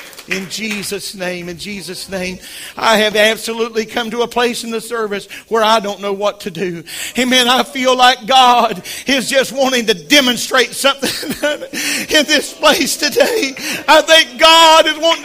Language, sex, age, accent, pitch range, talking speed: English, male, 50-69, American, 255-325 Hz, 170 wpm